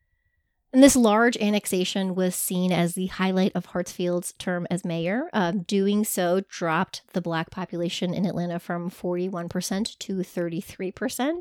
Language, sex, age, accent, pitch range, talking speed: English, female, 30-49, American, 180-230 Hz, 140 wpm